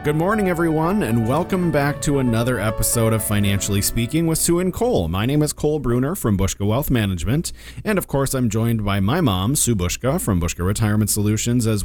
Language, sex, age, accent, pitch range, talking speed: English, male, 30-49, American, 90-125 Hz, 205 wpm